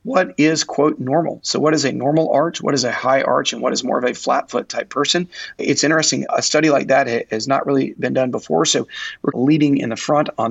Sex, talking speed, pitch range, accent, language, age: male, 250 wpm, 130-155 Hz, American, English, 30-49